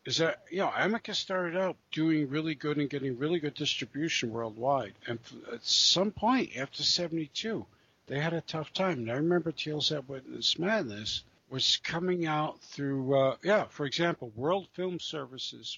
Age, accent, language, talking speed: 60-79, American, English, 170 wpm